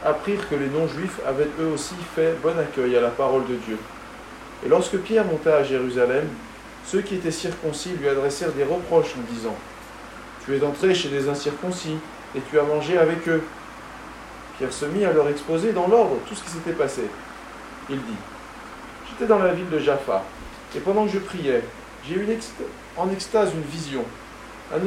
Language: French